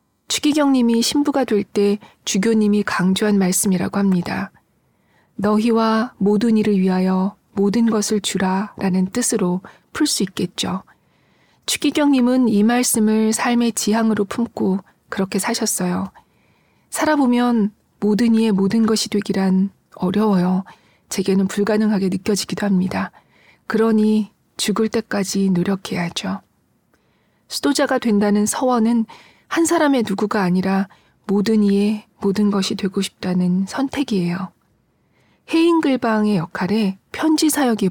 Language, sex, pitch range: Korean, female, 195-230 Hz